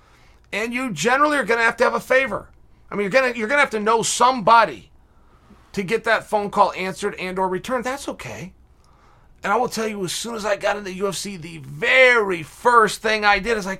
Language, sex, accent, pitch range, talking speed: English, male, American, 170-220 Hz, 230 wpm